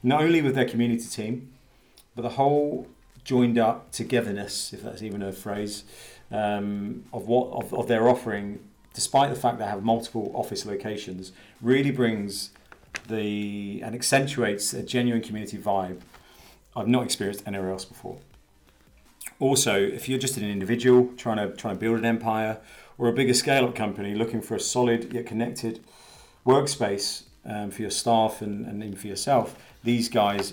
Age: 40-59